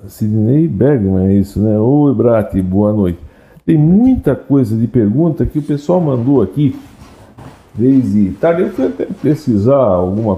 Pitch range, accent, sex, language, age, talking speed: 110-160 Hz, Brazilian, male, Portuguese, 60-79, 145 wpm